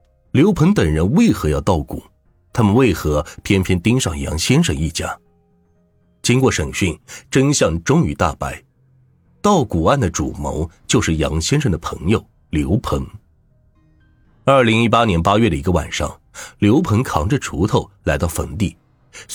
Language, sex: Chinese, male